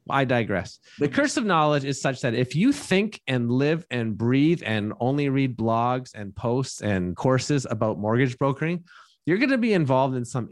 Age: 30-49